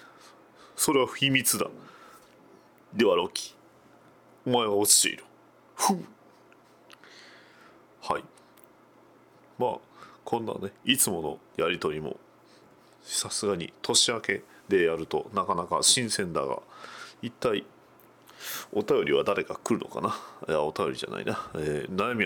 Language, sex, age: Japanese, male, 40-59